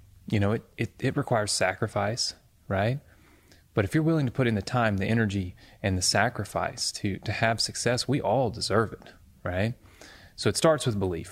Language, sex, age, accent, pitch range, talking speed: English, male, 30-49, American, 95-115 Hz, 190 wpm